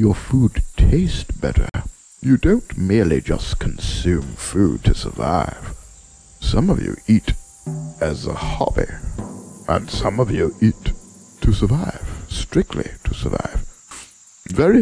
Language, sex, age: English, male, 60-79